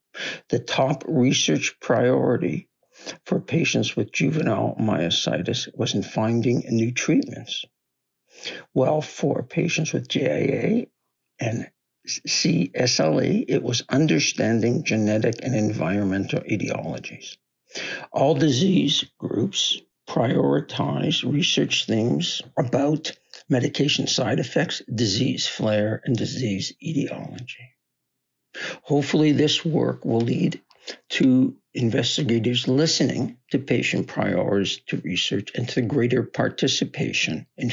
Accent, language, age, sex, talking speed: American, English, 60-79, male, 95 wpm